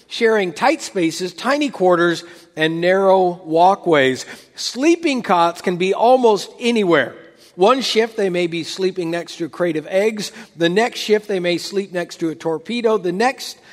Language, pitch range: English, 165-225 Hz